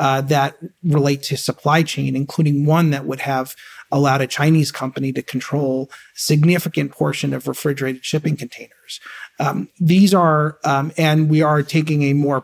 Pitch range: 135-160 Hz